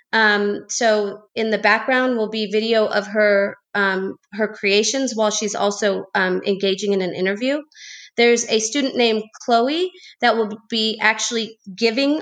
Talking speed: 150 wpm